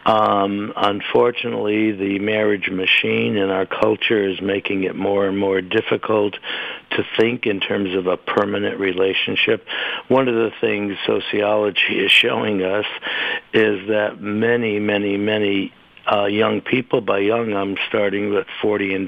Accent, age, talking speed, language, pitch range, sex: American, 60-79, 145 wpm, English, 100-115 Hz, male